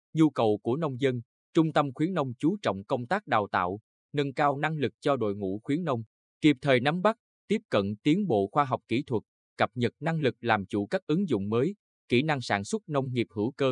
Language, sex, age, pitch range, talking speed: Vietnamese, male, 20-39, 115-155 Hz, 235 wpm